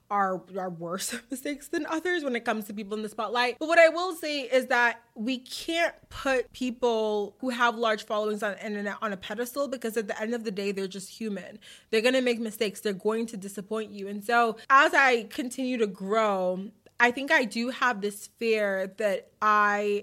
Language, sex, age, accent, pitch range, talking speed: English, female, 20-39, American, 215-310 Hz, 215 wpm